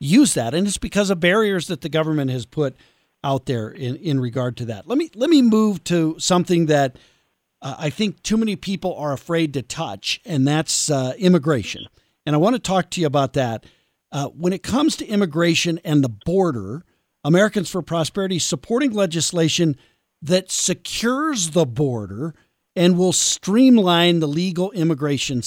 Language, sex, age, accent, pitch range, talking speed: English, male, 50-69, American, 140-190 Hz, 175 wpm